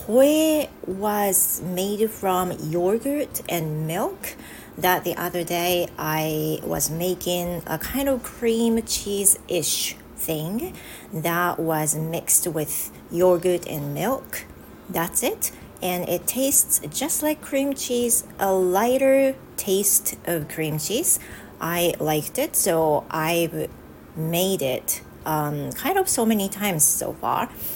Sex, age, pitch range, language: female, 40-59, 160-225 Hz, Japanese